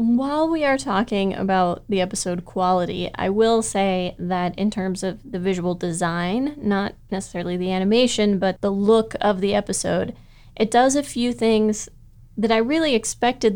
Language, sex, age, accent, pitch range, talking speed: English, female, 20-39, American, 180-220 Hz, 165 wpm